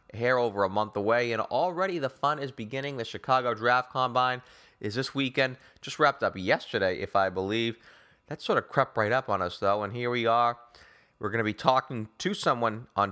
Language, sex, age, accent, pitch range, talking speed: English, male, 20-39, American, 105-130 Hz, 210 wpm